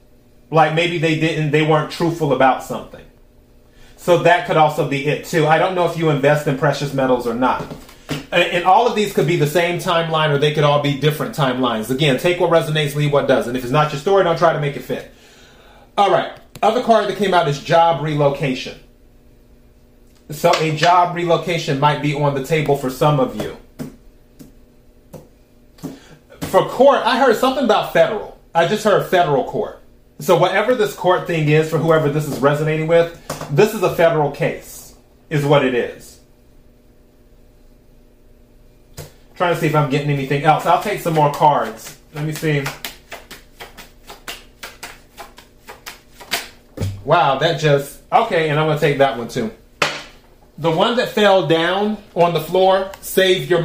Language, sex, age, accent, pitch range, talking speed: English, male, 30-49, American, 140-175 Hz, 175 wpm